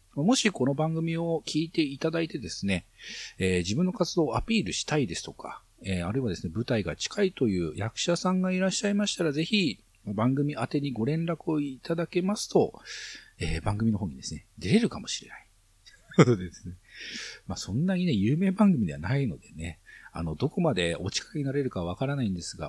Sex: male